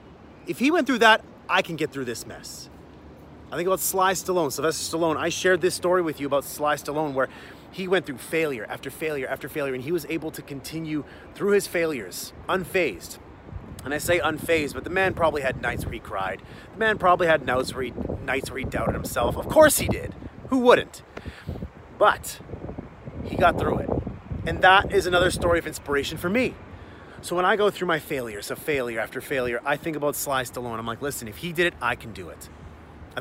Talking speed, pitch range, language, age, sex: 210 wpm, 120-180 Hz, English, 30-49, male